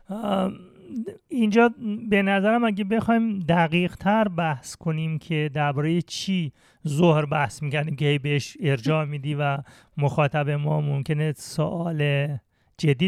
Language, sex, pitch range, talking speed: Persian, male, 145-195 Hz, 120 wpm